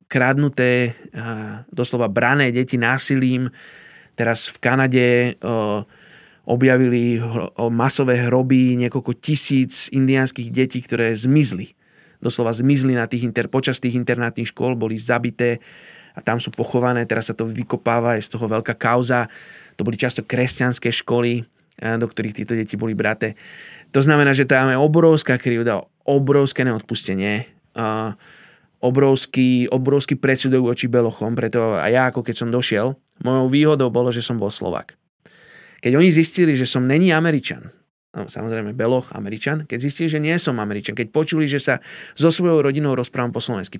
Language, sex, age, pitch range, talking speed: Slovak, male, 20-39, 120-145 Hz, 150 wpm